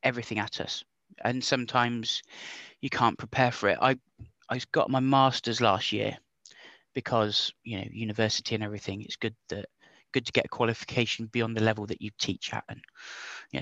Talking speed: 175 wpm